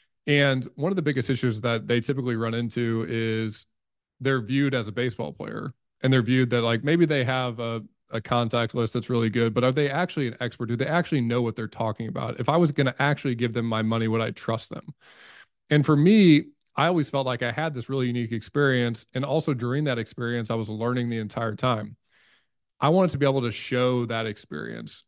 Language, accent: English, American